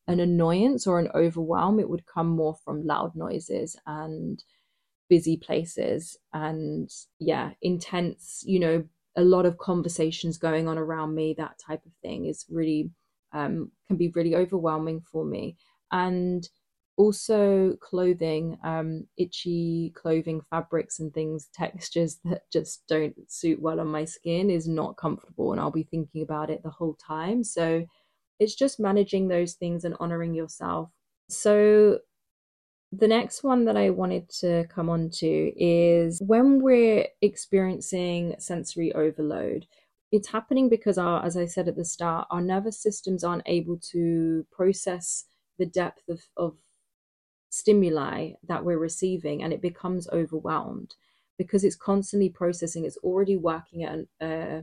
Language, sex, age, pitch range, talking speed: English, female, 20-39, 160-185 Hz, 150 wpm